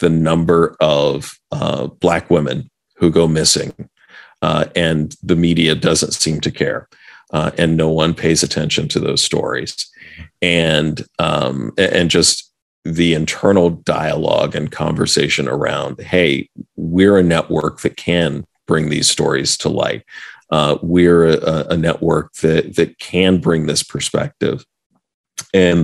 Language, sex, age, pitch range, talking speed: English, male, 40-59, 80-85 Hz, 135 wpm